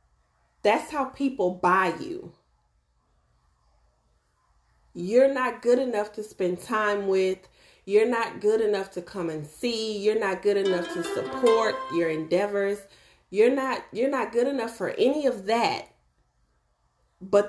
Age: 30-49